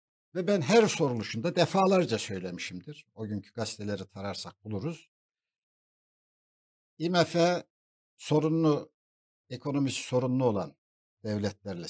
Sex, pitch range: male, 105-160 Hz